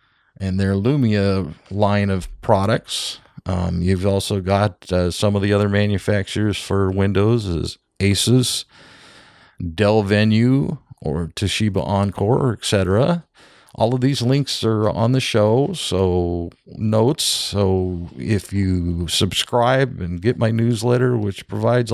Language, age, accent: English, 50-69, American